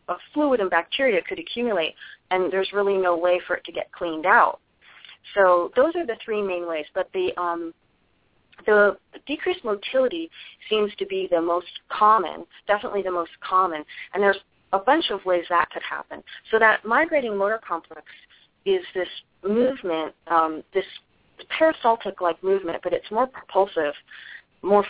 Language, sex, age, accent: English, female, 30-49, American